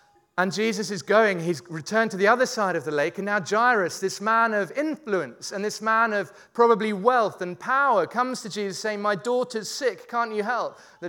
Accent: British